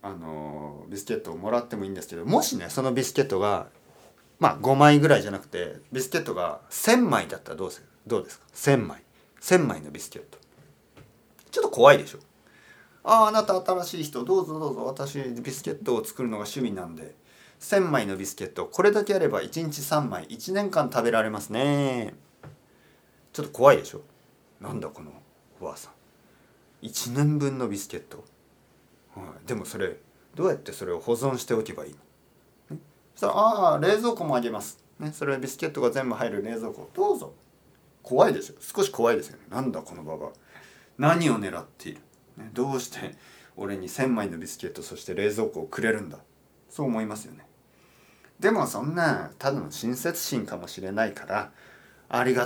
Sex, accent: male, native